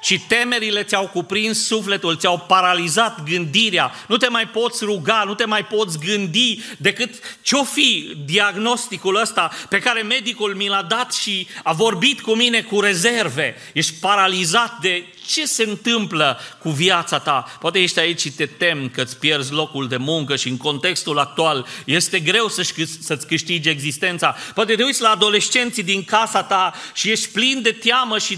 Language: Romanian